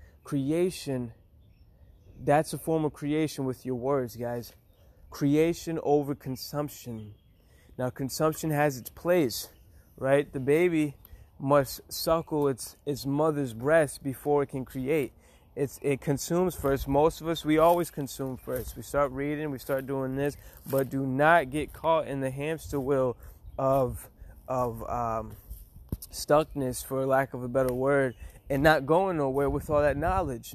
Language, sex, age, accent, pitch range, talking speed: English, male, 20-39, American, 125-150 Hz, 150 wpm